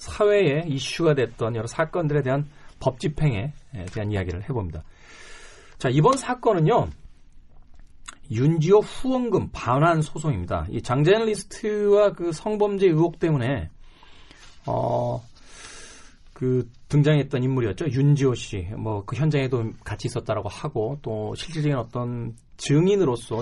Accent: native